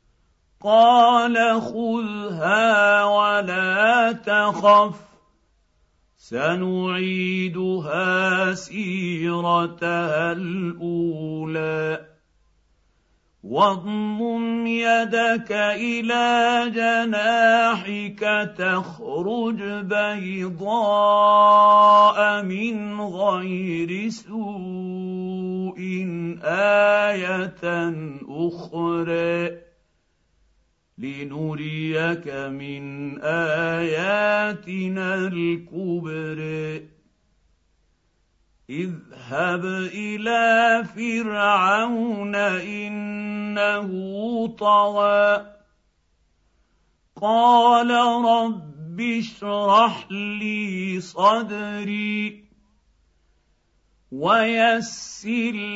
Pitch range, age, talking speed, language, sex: 165-210 Hz, 50-69, 35 wpm, Arabic, male